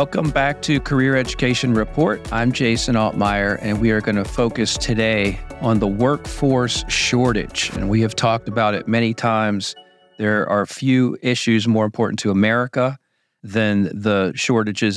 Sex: male